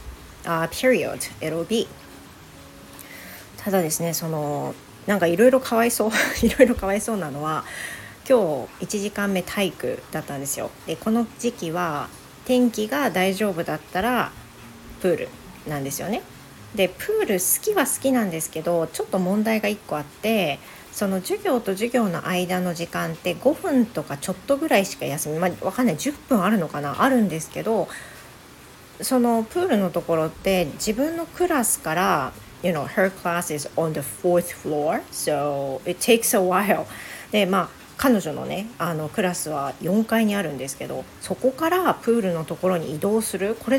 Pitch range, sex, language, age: 165-235 Hz, female, Japanese, 40-59